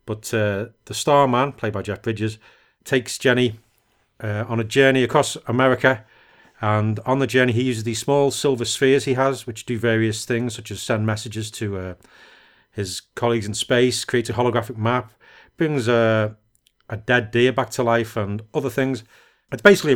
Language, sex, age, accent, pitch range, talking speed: English, male, 40-59, British, 110-125 Hz, 175 wpm